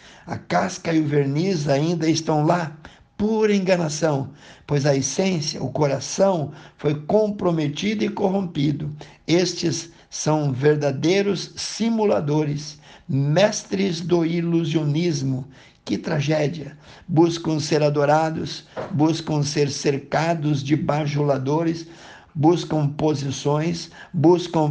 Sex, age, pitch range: male, 60-79, 150-175 Hz